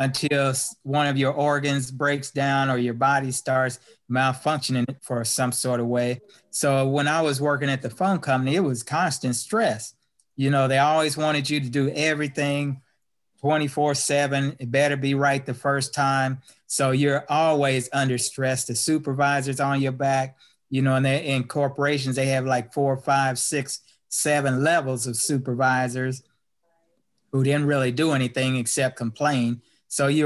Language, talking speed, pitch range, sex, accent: English, 165 wpm, 130-150 Hz, male, American